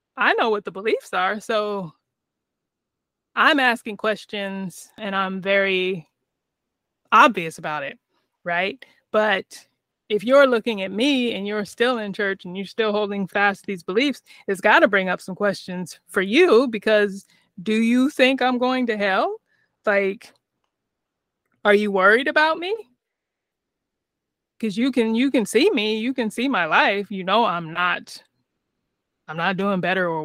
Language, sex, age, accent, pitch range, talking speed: English, female, 20-39, American, 180-225 Hz, 155 wpm